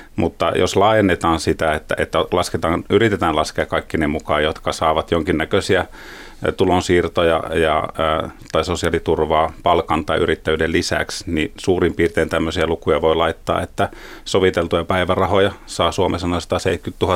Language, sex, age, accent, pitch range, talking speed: Finnish, male, 30-49, native, 80-95 Hz, 125 wpm